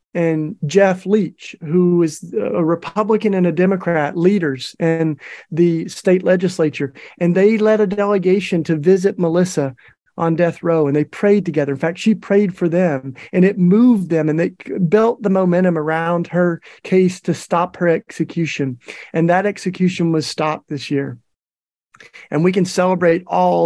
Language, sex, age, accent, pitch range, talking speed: English, male, 40-59, American, 155-195 Hz, 160 wpm